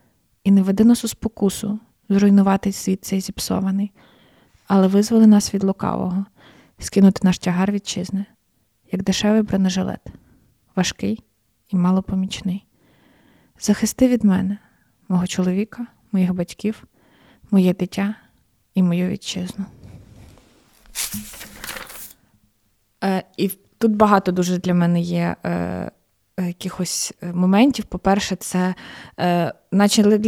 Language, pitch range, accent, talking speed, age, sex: Ukrainian, 175-200 Hz, native, 100 wpm, 20-39, female